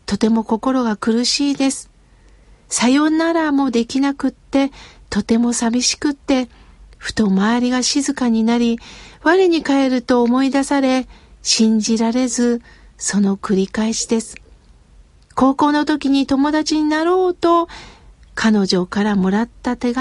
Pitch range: 230-300 Hz